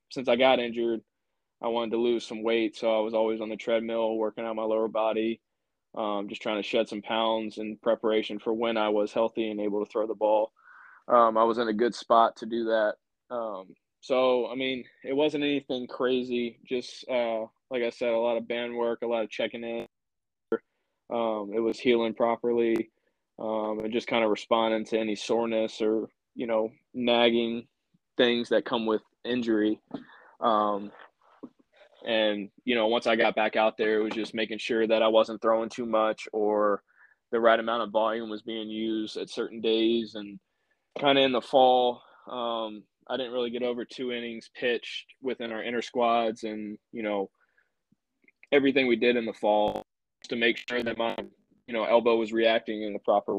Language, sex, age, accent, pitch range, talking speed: English, male, 20-39, American, 110-120 Hz, 195 wpm